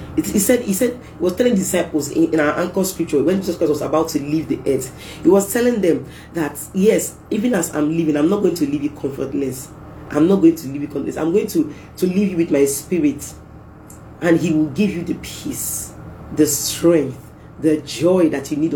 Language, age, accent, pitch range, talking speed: English, 40-59, Nigerian, 150-190 Hz, 220 wpm